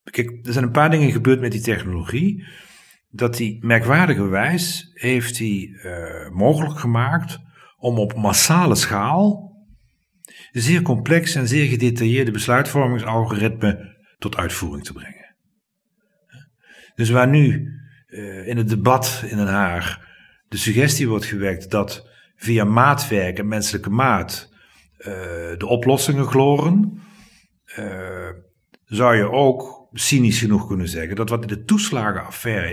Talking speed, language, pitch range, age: 130 wpm, Dutch, 105-150 Hz, 50-69